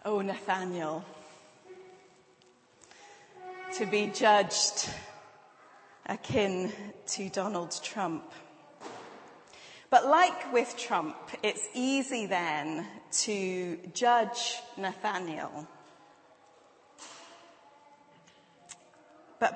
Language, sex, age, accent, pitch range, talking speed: English, female, 30-49, British, 190-260 Hz, 60 wpm